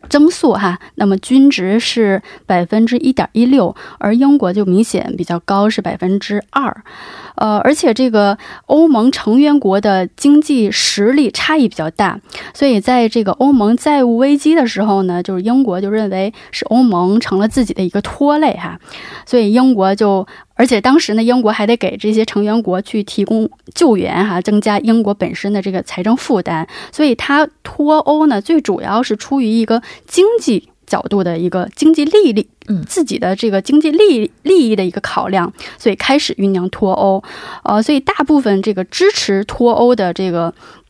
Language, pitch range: Korean, 195-270 Hz